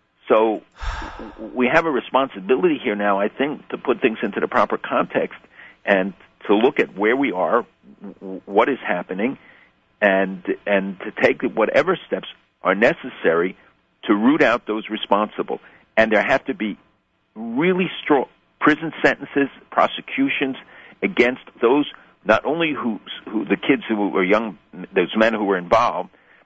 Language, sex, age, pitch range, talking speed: English, male, 50-69, 95-120 Hz, 145 wpm